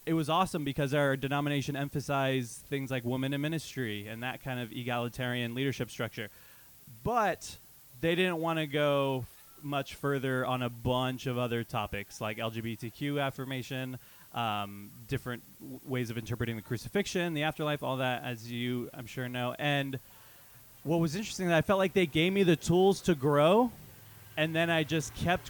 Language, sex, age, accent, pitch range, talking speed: English, male, 20-39, American, 120-150 Hz, 170 wpm